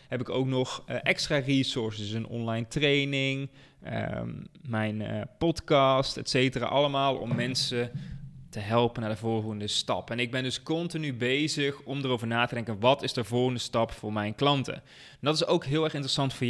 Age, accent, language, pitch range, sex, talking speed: 20-39, Dutch, Dutch, 115-145 Hz, male, 180 wpm